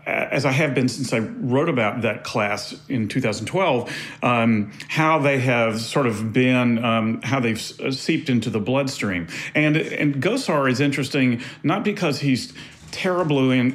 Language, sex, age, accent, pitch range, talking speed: English, male, 40-59, American, 115-145 Hz, 155 wpm